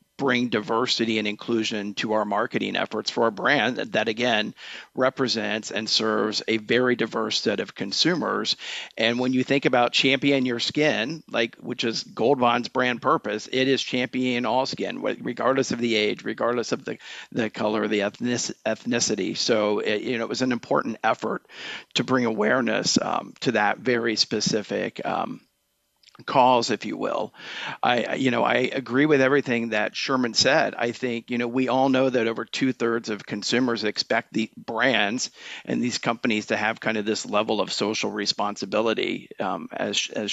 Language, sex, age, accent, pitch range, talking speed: English, male, 50-69, American, 110-130 Hz, 175 wpm